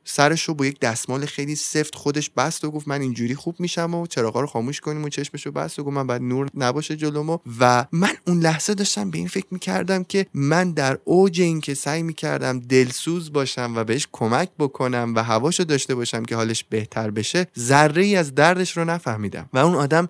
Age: 20-39